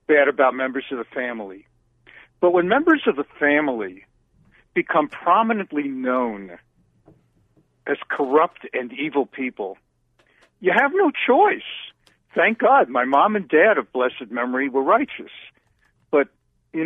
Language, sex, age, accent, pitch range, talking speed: English, male, 50-69, American, 135-220 Hz, 130 wpm